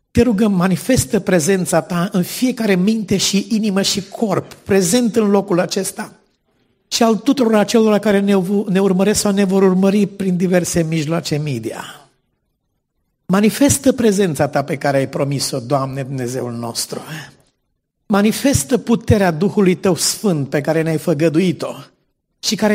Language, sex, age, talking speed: Romanian, male, 50-69, 140 wpm